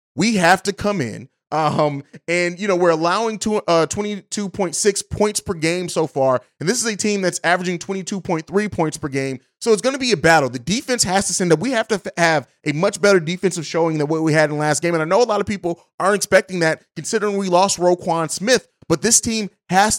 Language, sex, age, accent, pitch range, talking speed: English, male, 30-49, American, 160-205 Hz, 240 wpm